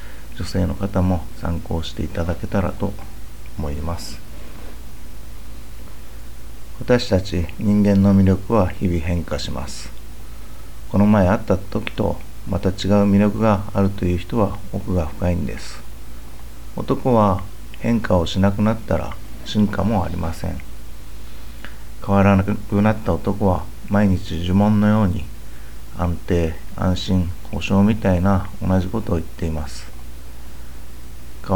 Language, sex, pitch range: Japanese, male, 65-100 Hz